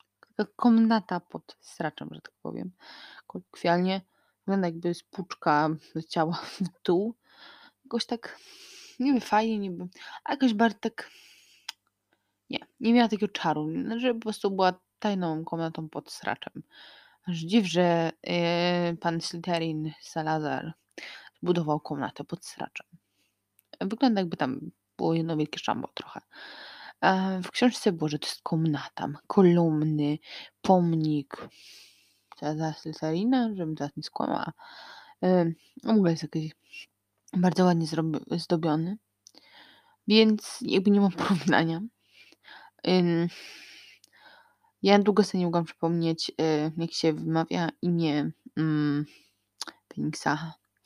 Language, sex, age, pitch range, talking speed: Polish, female, 20-39, 160-205 Hz, 115 wpm